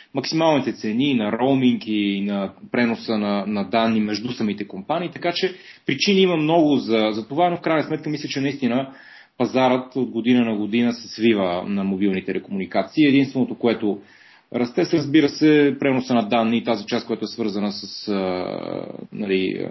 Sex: male